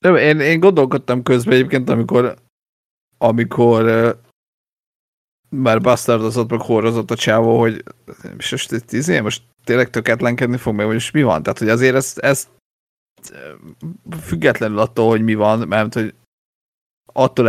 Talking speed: 135 wpm